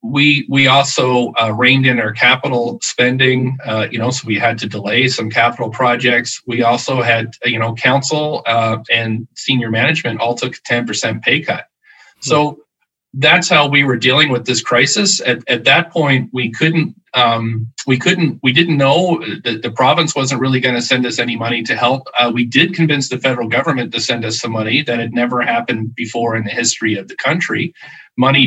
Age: 40-59